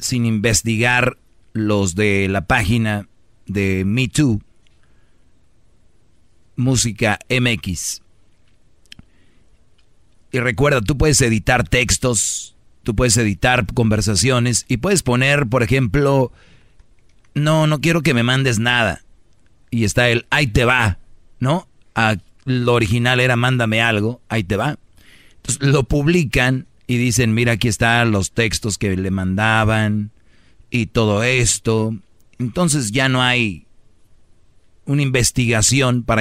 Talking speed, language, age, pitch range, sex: 120 wpm, Spanish, 40-59, 105-130 Hz, male